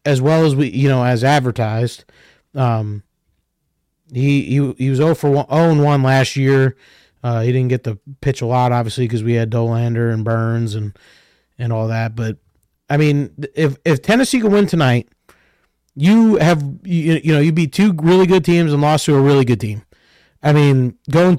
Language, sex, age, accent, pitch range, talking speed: English, male, 30-49, American, 120-150 Hz, 195 wpm